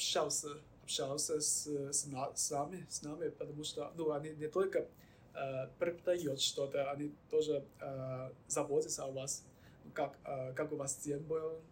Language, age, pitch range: Russian, 20-39, 135-150 Hz